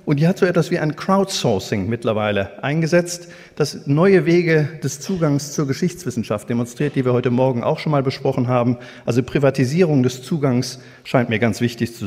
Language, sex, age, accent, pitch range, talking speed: German, male, 50-69, German, 120-165 Hz, 180 wpm